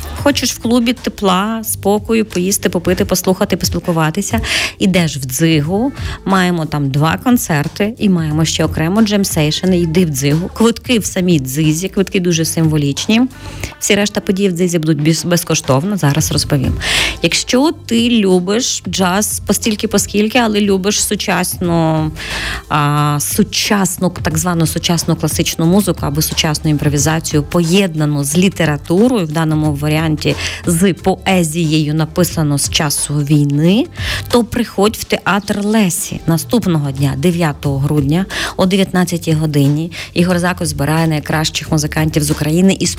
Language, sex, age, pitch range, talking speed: Ukrainian, female, 30-49, 155-205 Hz, 130 wpm